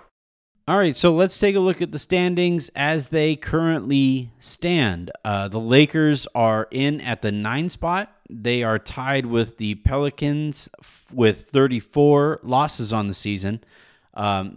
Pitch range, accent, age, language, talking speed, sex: 110-150 Hz, American, 30-49, English, 150 wpm, male